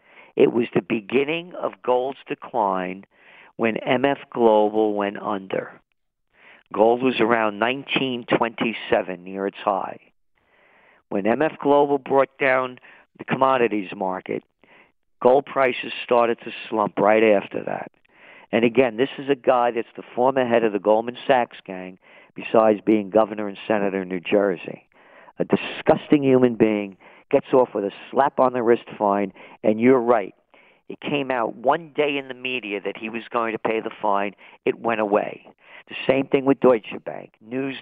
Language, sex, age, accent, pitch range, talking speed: English, male, 50-69, American, 110-135 Hz, 155 wpm